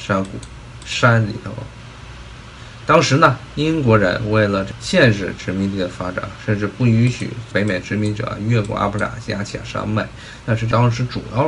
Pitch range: 100-120 Hz